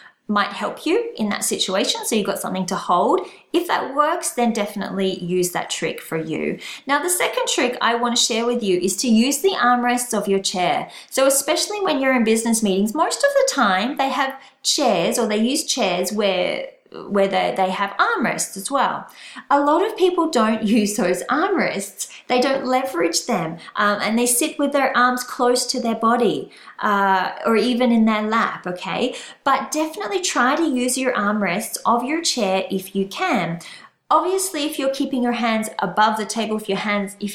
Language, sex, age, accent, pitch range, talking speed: English, female, 30-49, Australian, 200-275 Hz, 195 wpm